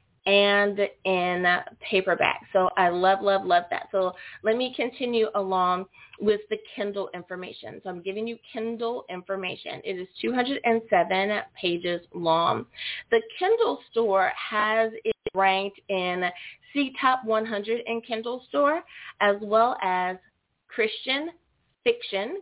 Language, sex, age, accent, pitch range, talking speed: English, female, 30-49, American, 190-245 Hz, 125 wpm